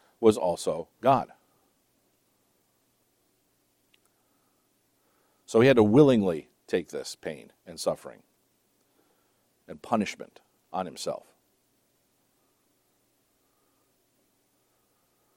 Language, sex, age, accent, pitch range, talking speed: English, male, 50-69, American, 105-135 Hz, 65 wpm